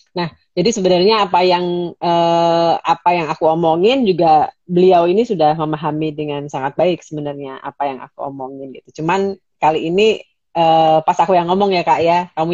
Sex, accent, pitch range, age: female, native, 155-190 Hz, 30-49